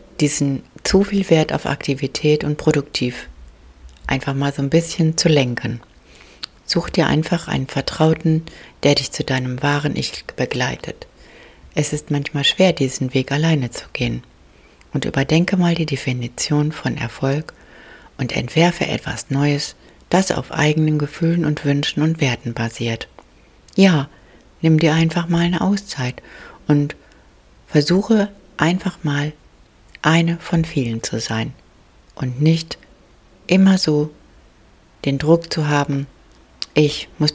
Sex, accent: female, German